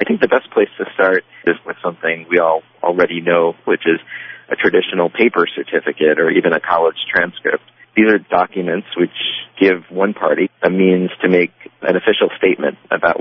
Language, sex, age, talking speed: English, male, 40-59, 180 wpm